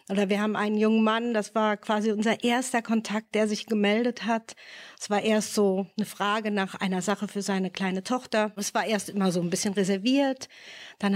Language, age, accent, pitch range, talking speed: German, 50-69, German, 205-250 Hz, 205 wpm